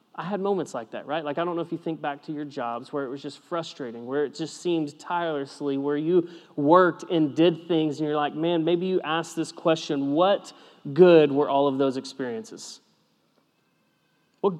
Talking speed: 205 wpm